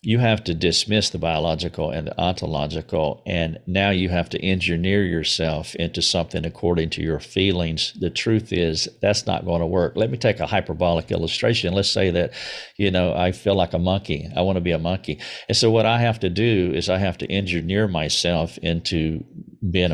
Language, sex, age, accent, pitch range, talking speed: English, male, 50-69, American, 85-100 Hz, 200 wpm